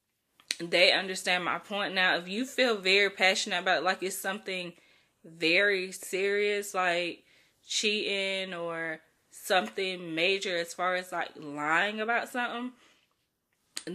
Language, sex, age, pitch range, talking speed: English, female, 20-39, 180-210 Hz, 125 wpm